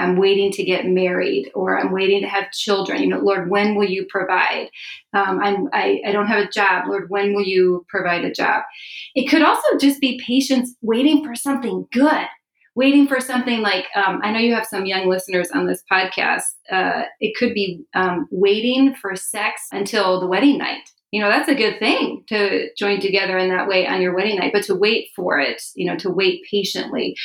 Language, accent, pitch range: English, American, 195-260 Hz